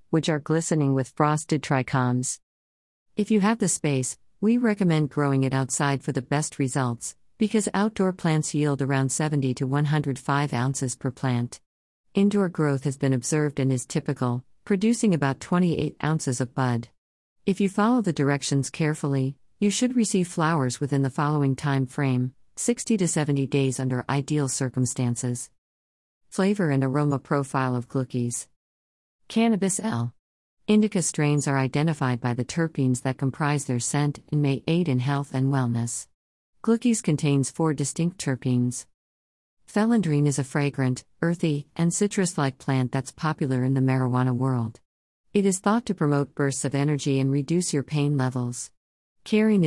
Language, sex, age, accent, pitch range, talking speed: English, female, 50-69, American, 125-160 Hz, 155 wpm